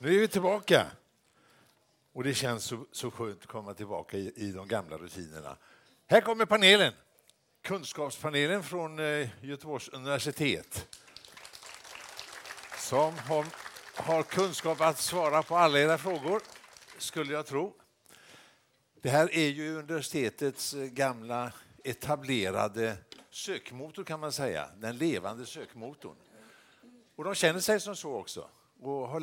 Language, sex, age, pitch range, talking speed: Swedish, male, 60-79, 120-160 Hz, 125 wpm